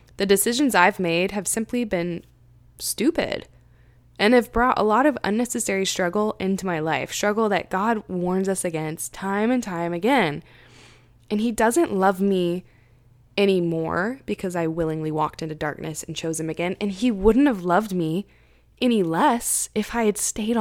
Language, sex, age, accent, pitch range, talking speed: English, female, 20-39, American, 160-210 Hz, 165 wpm